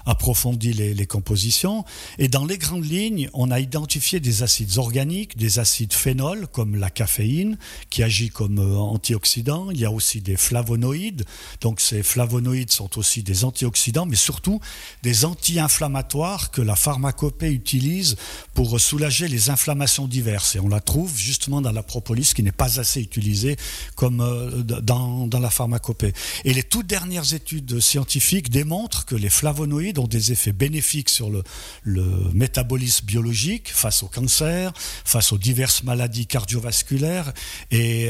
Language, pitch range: French, 110-145 Hz